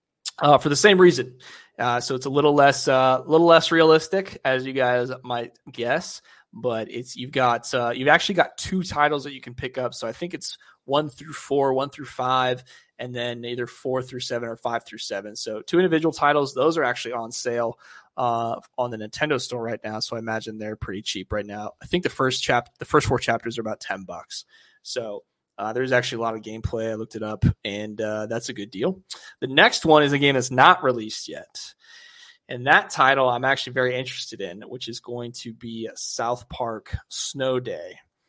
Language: English